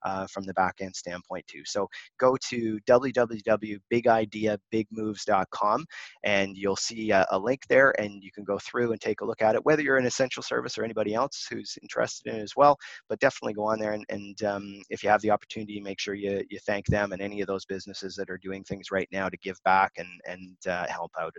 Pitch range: 100-125 Hz